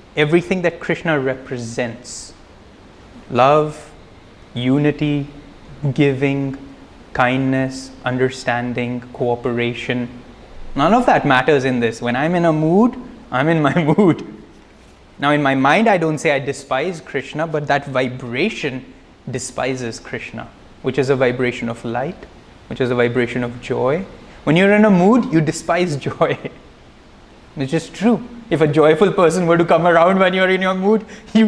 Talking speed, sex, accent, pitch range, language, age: 145 wpm, male, Indian, 130-180 Hz, English, 20-39